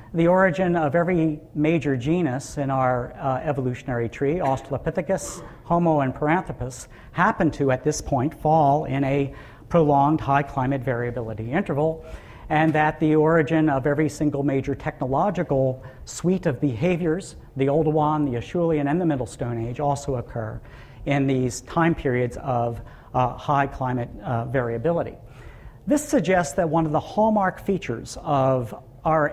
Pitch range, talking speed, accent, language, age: 130-160 Hz, 140 wpm, American, English, 50-69